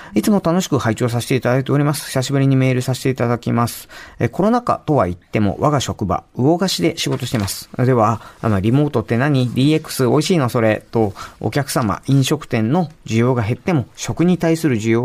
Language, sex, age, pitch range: Japanese, male, 40-59, 115-160 Hz